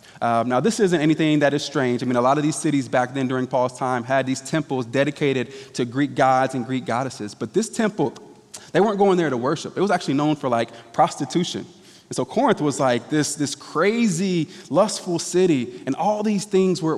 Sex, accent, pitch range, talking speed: male, American, 130-175 Hz, 215 wpm